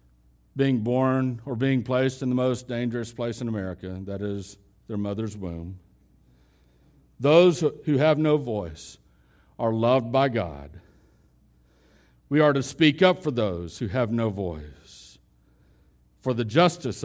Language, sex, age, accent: English, male, 60-79, American